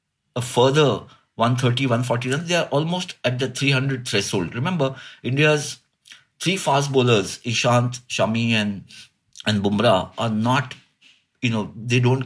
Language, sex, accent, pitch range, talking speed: English, male, Indian, 100-130 Hz, 130 wpm